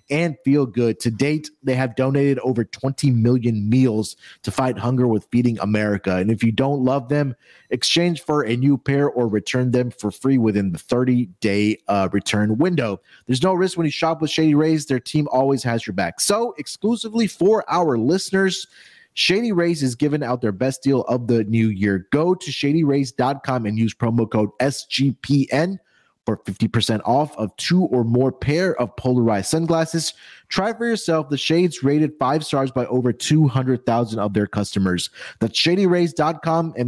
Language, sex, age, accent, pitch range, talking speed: English, male, 30-49, American, 115-155 Hz, 170 wpm